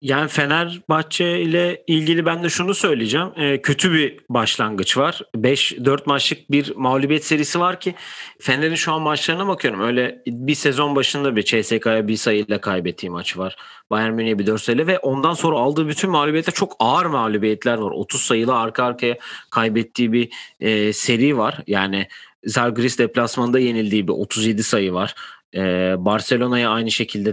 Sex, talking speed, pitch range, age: male, 155 wpm, 110-155 Hz, 40-59